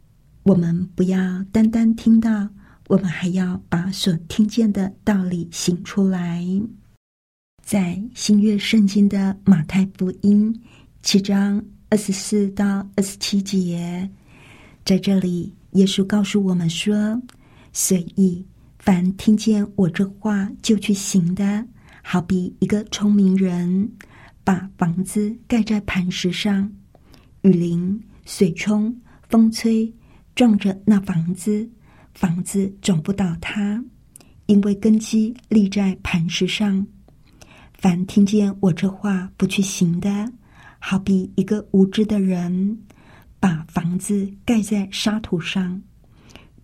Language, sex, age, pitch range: Chinese, female, 50-69, 185-210 Hz